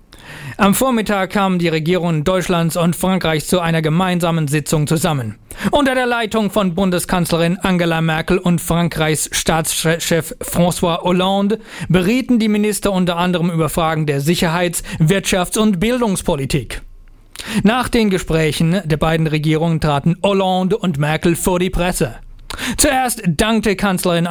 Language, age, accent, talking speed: German, 40-59, German, 130 wpm